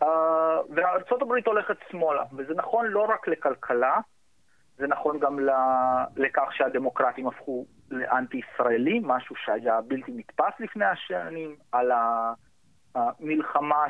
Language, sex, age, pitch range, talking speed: Hebrew, male, 30-49, 140-185 Hz, 110 wpm